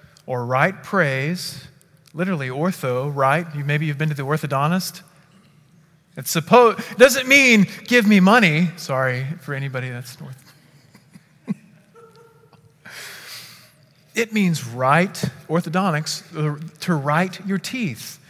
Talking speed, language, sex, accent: 110 wpm, English, male, American